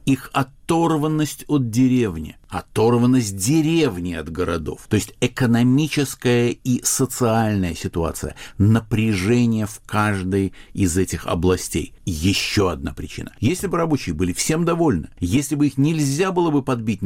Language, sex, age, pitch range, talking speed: Russian, male, 50-69, 90-135 Hz, 125 wpm